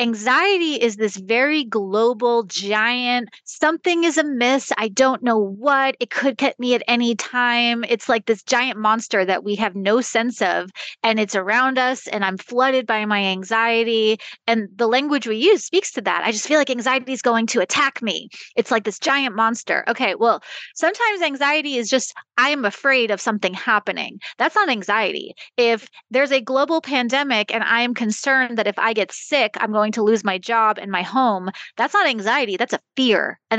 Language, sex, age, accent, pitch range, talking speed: English, female, 30-49, American, 215-265 Hz, 195 wpm